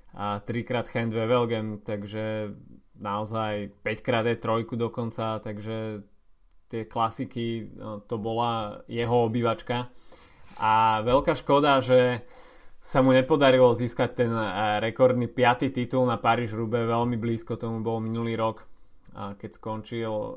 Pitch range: 110-125 Hz